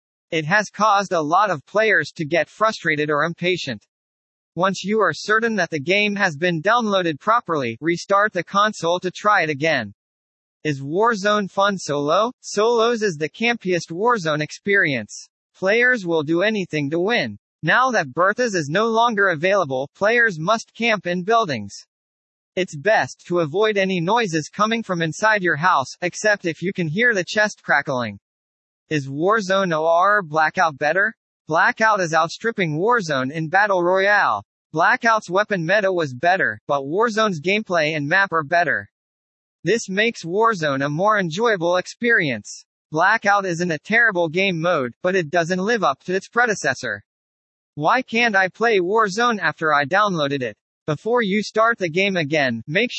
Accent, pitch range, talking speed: American, 155-215 Hz, 155 wpm